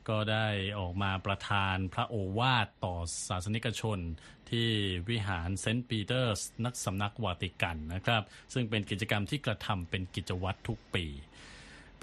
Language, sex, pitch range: Thai, male, 95-120 Hz